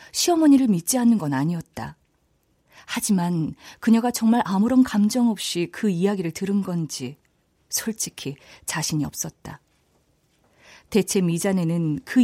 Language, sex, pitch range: Korean, female, 160-210 Hz